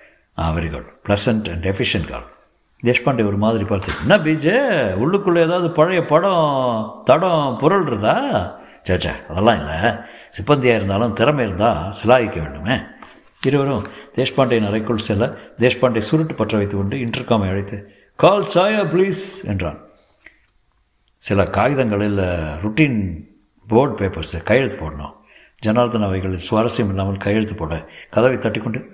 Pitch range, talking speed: 100-155 Hz, 120 wpm